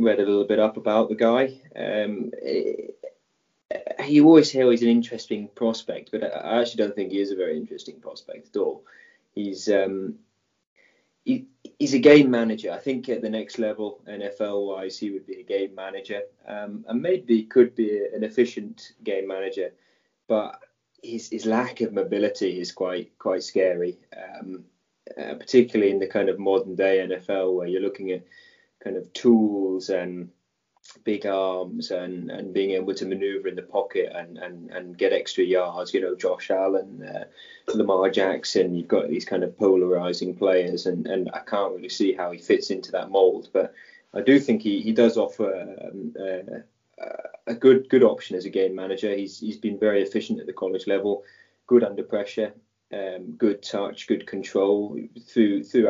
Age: 20-39